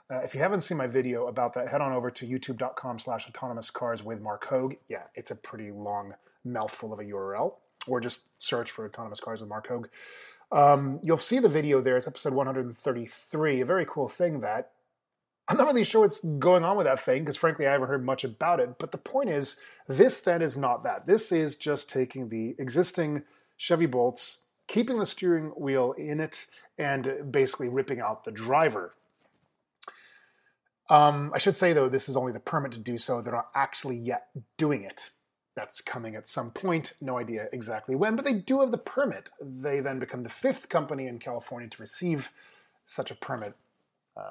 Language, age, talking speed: English, 30-49, 200 wpm